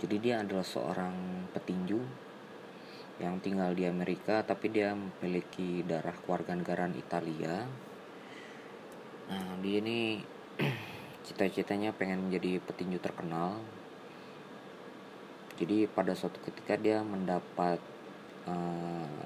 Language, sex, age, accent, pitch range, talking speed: Indonesian, female, 20-39, native, 90-115 Hz, 95 wpm